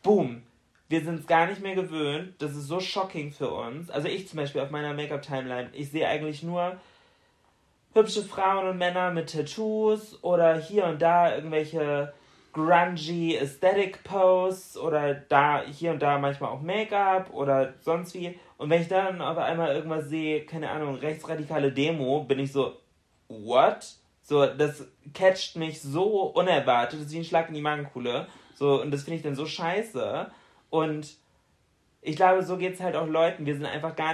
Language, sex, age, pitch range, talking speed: German, male, 20-39, 145-180 Hz, 175 wpm